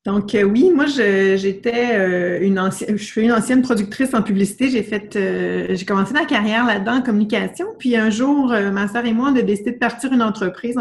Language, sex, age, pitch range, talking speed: French, female, 30-49, 195-245 Hz, 230 wpm